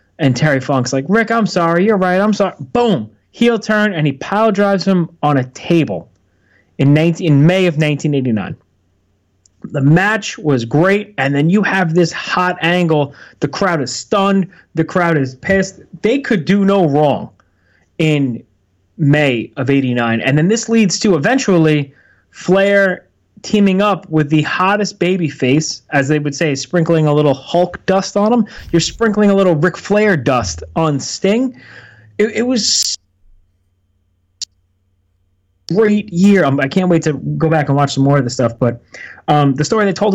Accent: American